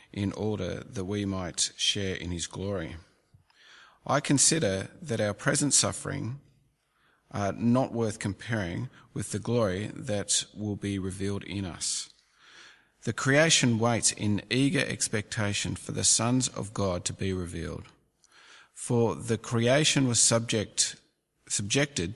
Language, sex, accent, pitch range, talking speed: English, male, Australian, 100-130 Hz, 130 wpm